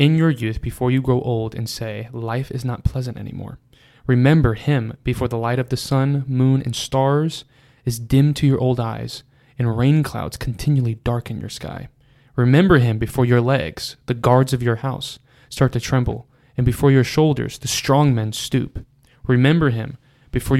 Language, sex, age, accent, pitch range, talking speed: English, male, 20-39, American, 120-135 Hz, 180 wpm